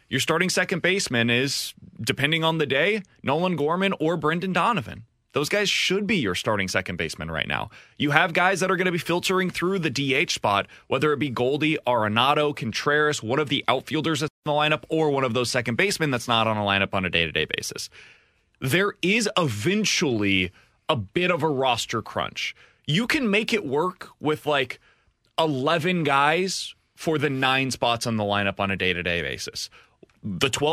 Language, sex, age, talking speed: English, male, 20-39, 185 wpm